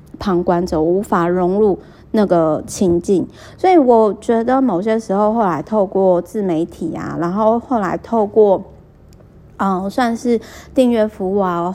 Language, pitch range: Chinese, 180-225 Hz